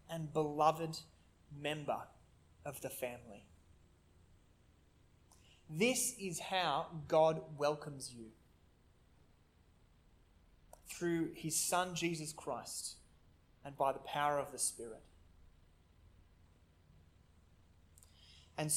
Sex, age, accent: male, 20-39, Australian